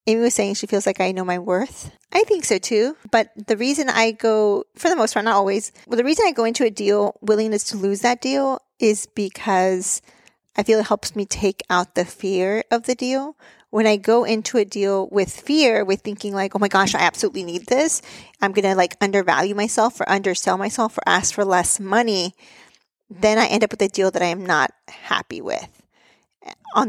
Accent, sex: American, female